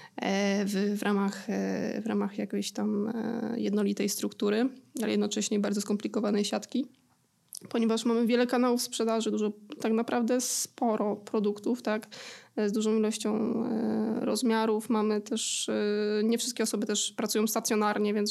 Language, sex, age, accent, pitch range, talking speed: Polish, female, 20-39, native, 210-230 Hz, 125 wpm